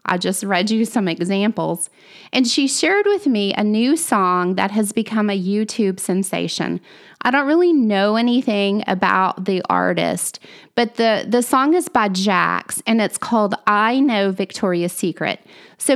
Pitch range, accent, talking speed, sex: 195-240 Hz, American, 160 wpm, female